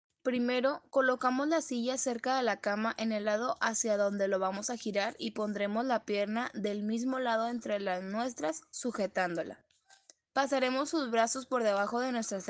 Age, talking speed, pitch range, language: 10-29, 170 wpm, 215-260 Hz, English